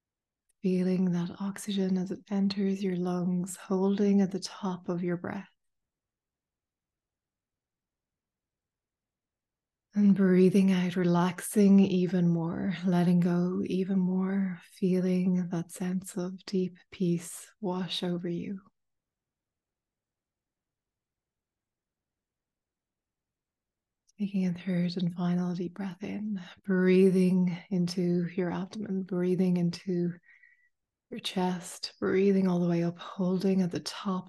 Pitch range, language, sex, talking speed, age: 180-195 Hz, English, female, 105 wpm, 20-39